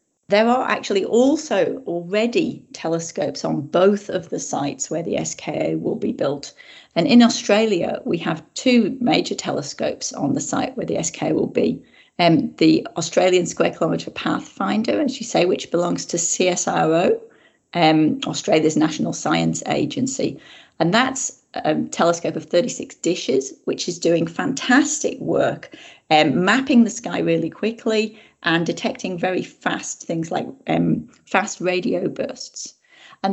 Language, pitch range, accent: English, 175-245 Hz, British